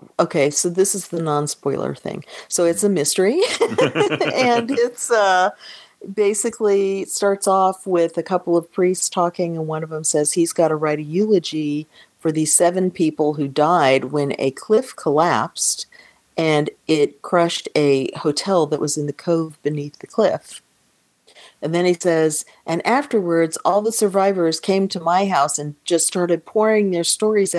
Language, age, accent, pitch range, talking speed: English, 40-59, American, 150-190 Hz, 165 wpm